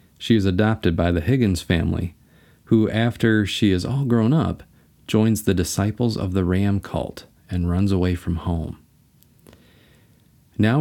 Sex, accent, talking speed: male, American, 150 wpm